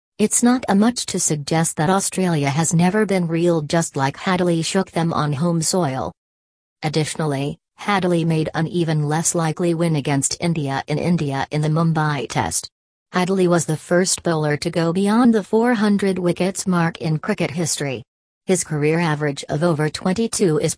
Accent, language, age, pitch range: American, English, 40-59, 150-180 Hz